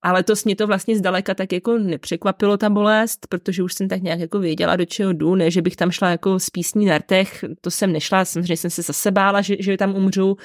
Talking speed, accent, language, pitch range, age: 240 wpm, native, Czech, 190-245 Hz, 30-49